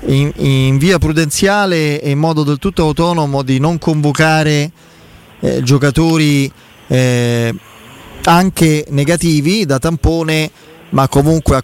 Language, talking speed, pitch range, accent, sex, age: Italian, 120 wpm, 130-160 Hz, native, male, 20-39